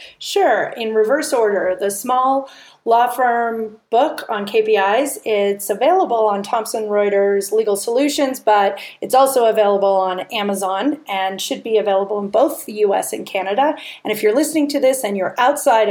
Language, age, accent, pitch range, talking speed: English, 40-59, American, 205-260 Hz, 160 wpm